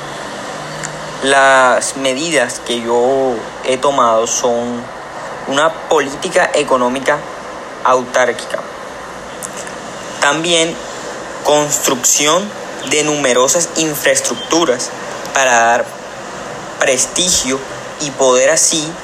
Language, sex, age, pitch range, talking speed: Spanish, male, 30-49, 125-150 Hz, 70 wpm